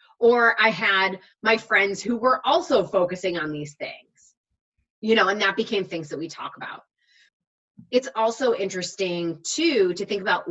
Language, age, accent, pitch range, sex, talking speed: English, 20-39, American, 180-225 Hz, female, 165 wpm